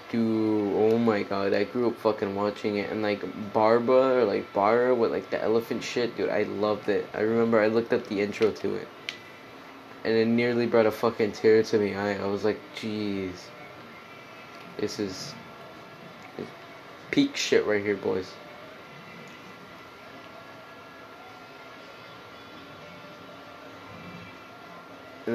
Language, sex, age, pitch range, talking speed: English, male, 20-39, 105-115 Hz, 135 wpm